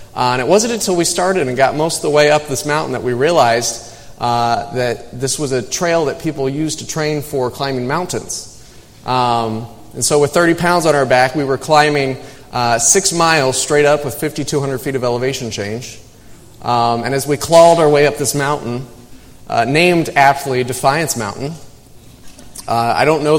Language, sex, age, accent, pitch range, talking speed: English, male, 30-49, American, 125-150 Hz, 190 wpm